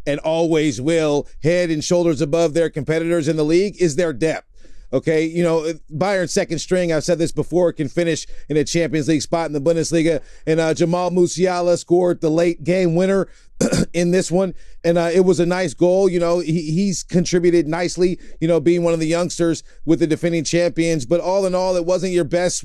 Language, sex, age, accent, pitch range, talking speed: English, male, 30-49, American, 160-190 Hz, 210 wpm